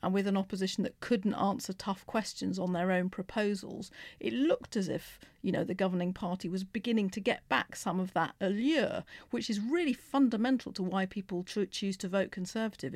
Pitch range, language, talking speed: 185-225 Hz, English, 195 wpm